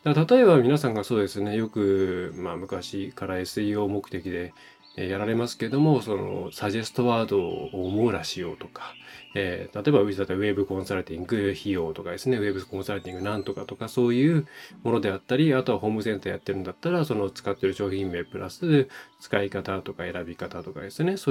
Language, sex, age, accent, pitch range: Japanese, male, 20-39, native, 100-135 Hz